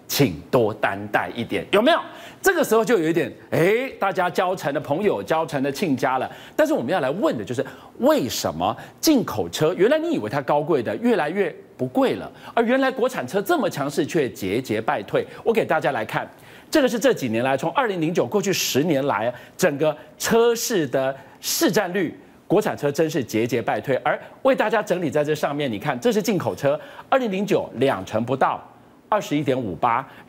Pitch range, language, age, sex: 135-230 Hz, Chinese, 40-59, male